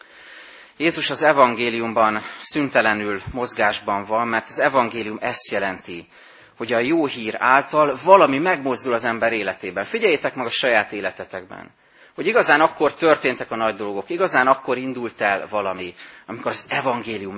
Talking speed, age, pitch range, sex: 140 wpm, 30-49, 105-145 Hz, male